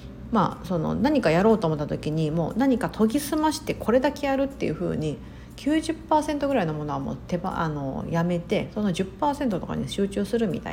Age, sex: 50-69, female